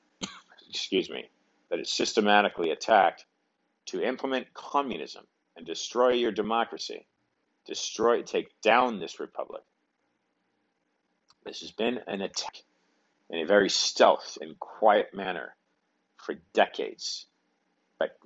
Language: English